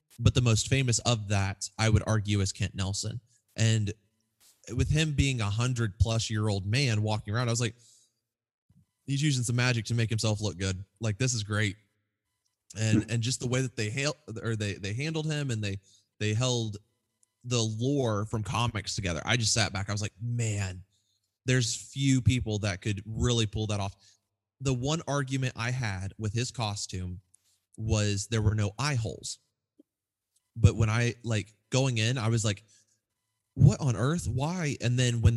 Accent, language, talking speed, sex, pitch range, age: American, English, 185 wpm, male, 105-120 Hz, 20-39